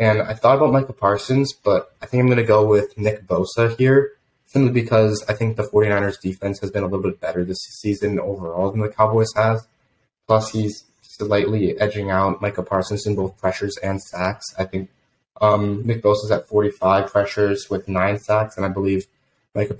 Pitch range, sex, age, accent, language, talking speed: 95-110 Hz, male, 20-39, American, English, 190 wpm